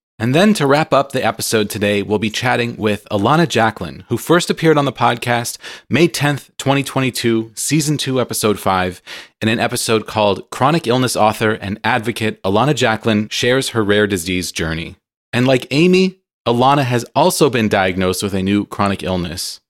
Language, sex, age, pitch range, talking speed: English, male, 30-49, 100-130 Hz, 170 wpm